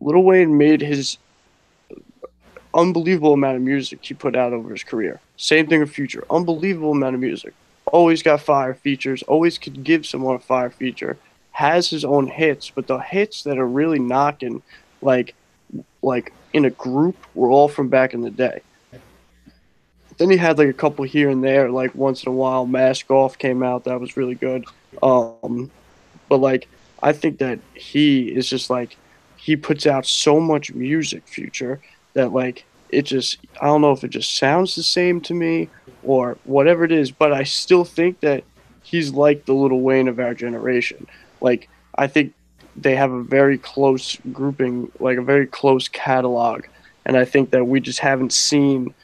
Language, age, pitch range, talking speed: English, 20-39, 130-150 Hz, 180 wpm